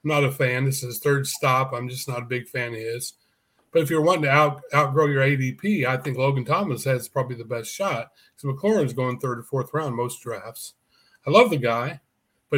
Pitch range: 125-150 Hz